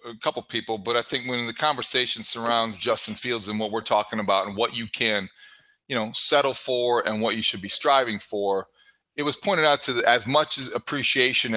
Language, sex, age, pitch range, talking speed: English, male, 40-59, 115-140 Hz, 215 wpm